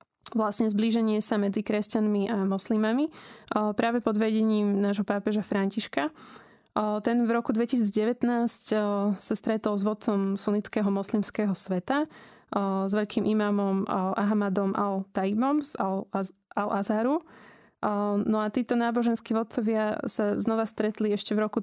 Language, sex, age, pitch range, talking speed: Slovak, female, 20-39, 200-225 Hz, 120 wpm